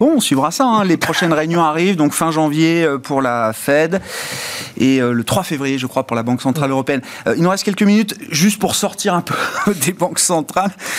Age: 30-49